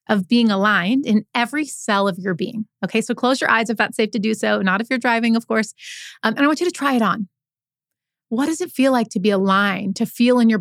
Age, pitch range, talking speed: 30-49, 185-230 Hz, 265 wpm